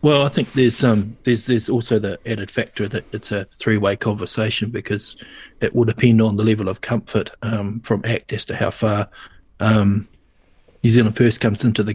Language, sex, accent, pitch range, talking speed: English, male, Australian, 105-120 Hz, 195 wpm